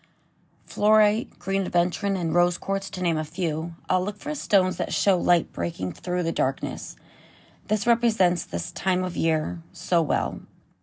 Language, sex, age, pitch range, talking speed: English, female, 30-49, 165-205 Hz, 160 wpm